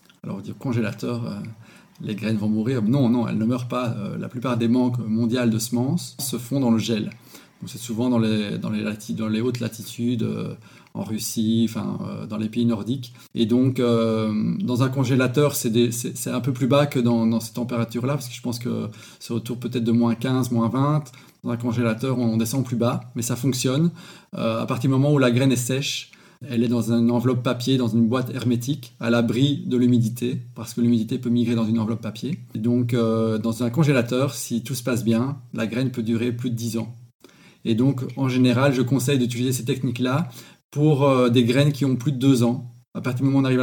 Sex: male